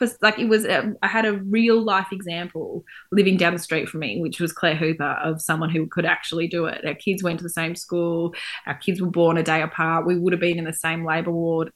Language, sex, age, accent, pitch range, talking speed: English, female, 20-39, Australian, 160-195 Hz, 255 wpm